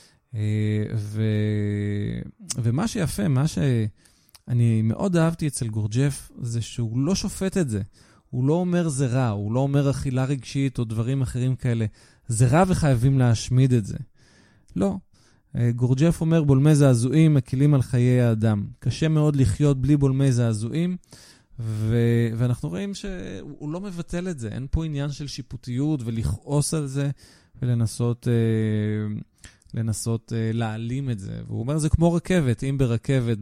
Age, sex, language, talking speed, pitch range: 20-39, male, Hebrew, 145 wpm, 110-145 Hz